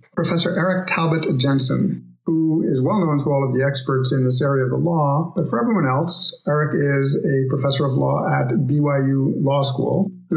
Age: 50-69